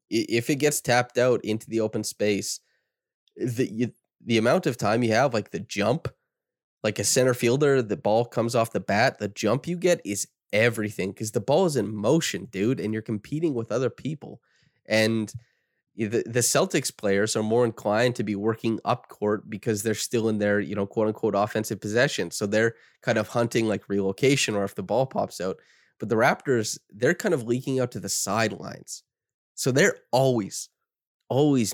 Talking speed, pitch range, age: 190 wpm, 100-115 Hz, 20-39